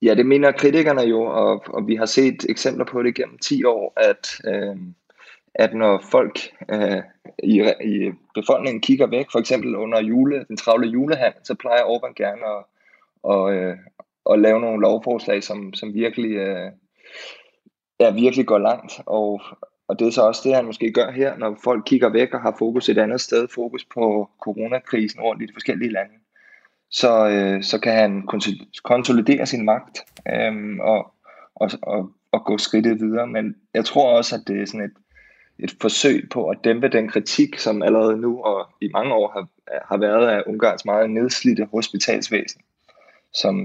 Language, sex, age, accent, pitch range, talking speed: Danish, male, 20-39, native, 105-115 Hz, 170 wpm